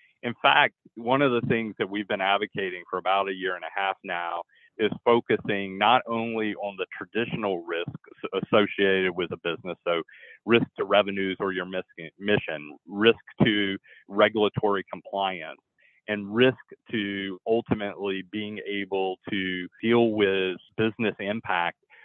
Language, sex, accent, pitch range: English, male, American, 95-115 Hz